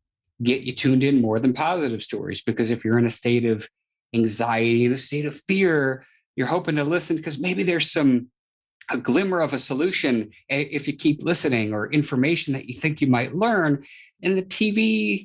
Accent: American